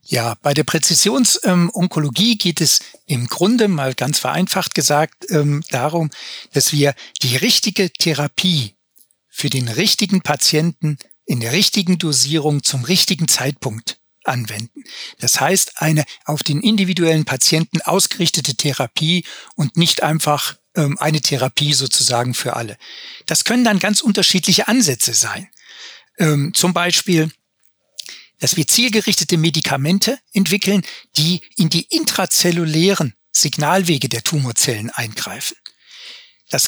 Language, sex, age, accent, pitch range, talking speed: German, male, 60-79, German, 145-195 Hz, 120 wpm